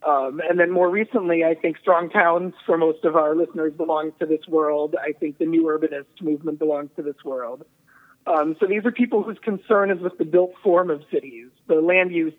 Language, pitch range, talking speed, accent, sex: English, 155-205 Hz, 220 wpm, American, male